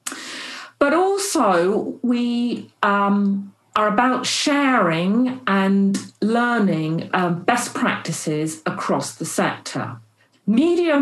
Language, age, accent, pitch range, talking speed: English, 50-69, British, 175-250 Hz, 85 wpm